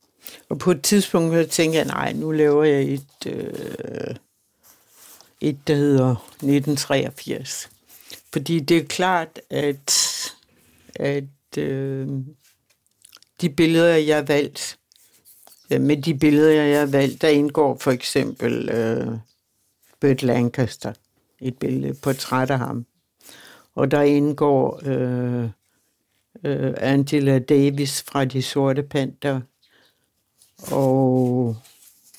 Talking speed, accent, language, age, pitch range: 110 wpm, native, Danish, 60-79, 125-150 Hz